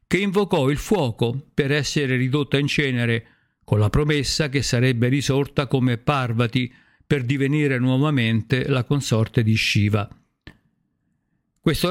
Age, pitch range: 50-69, 120-150 Hz